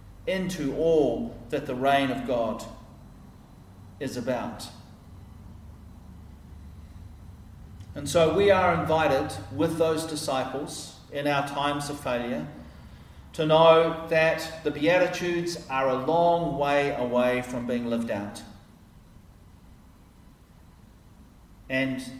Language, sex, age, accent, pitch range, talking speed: English, male, 40-59, Australian, 110-150 Hz, 100 wpm